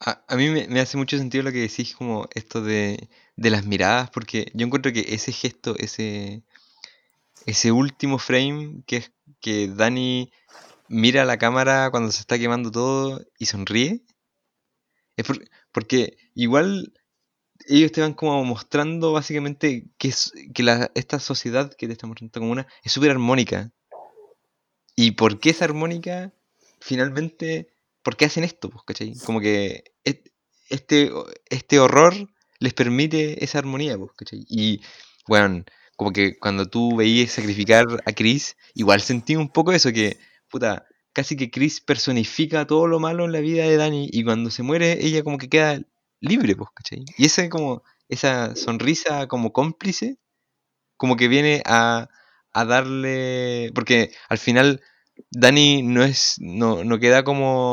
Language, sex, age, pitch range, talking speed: Spanish, male, 20-39, 115-145 Hz, 155 wpm